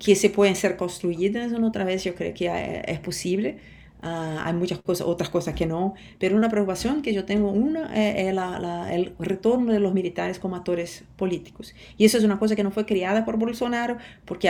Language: Spanish